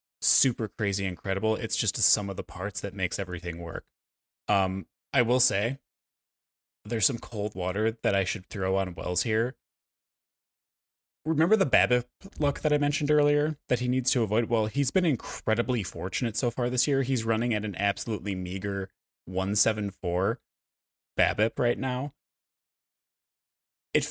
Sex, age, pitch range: male, 20-39, 95-125 Hz